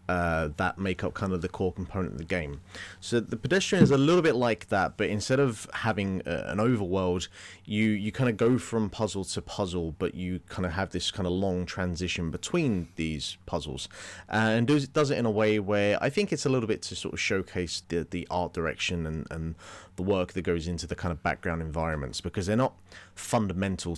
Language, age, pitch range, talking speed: English, 30-49, 85-110 Hz, 225 wpm